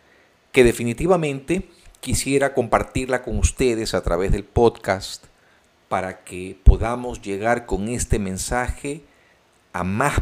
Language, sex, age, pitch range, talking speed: Spanish, male, 50-69, 100-140 Hz, 110 wpm